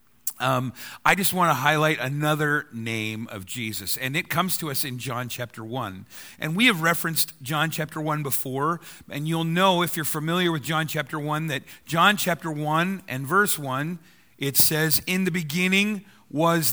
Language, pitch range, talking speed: English, 145-185 Hz, 180 wpm